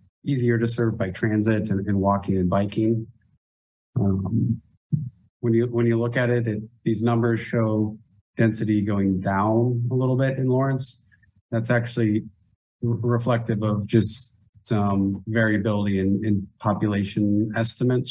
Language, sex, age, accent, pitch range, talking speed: English, male, 30-49, American, 100-115 Hz, 135 wpm